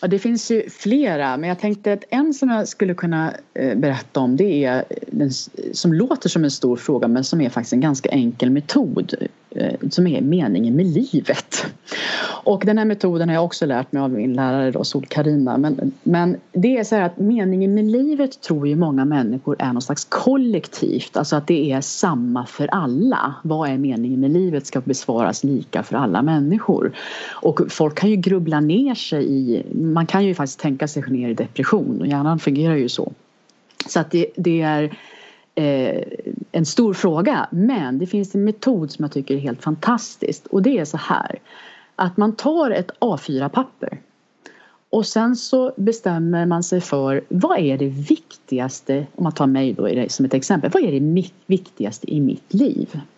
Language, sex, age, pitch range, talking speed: English, female, 30-49, 140-210 Hz, 185 wpm